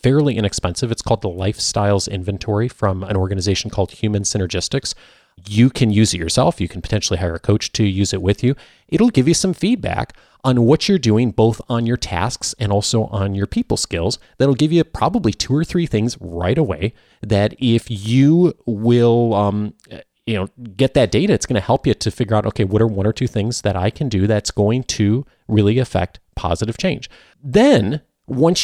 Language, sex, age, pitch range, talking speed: English, male, 30-49, 100-130 Hz, 200 wpm